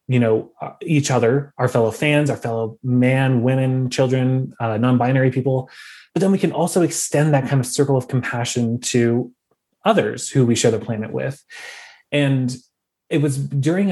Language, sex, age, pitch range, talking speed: English, male, 20-39, 120-150 Hz, 170 wpm